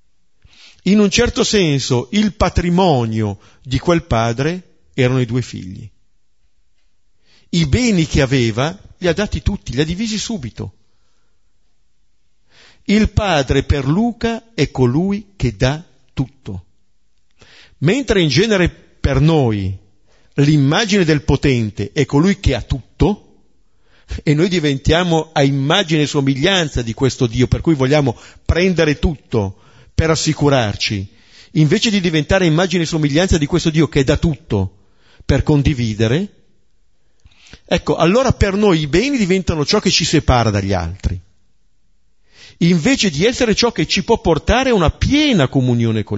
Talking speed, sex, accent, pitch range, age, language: 135 wpm, male, native, 110-175 Hz, 50-69, Italian